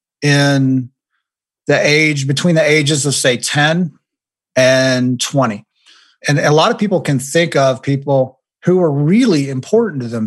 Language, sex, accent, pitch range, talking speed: English, male, American, 130-160 Hz, 150 wpm